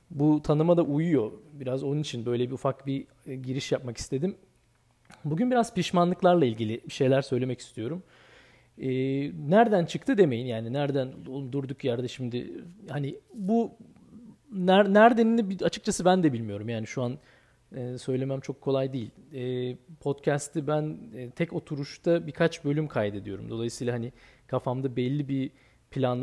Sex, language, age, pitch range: male, Turkish, 40-59, 120-155 Hz